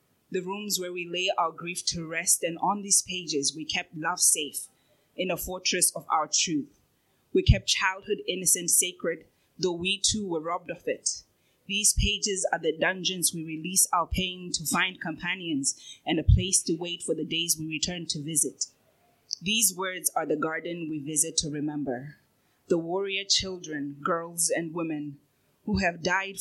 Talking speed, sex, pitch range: 175 wpm, female, 155-185 Hz